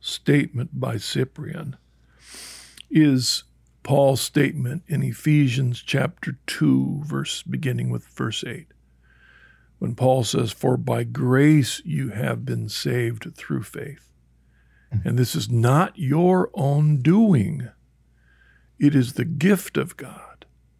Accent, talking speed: American, 115 wpm